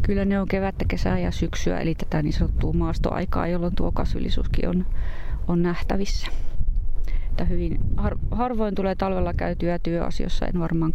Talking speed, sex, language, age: 155 wpm, female, Finnish, 30-49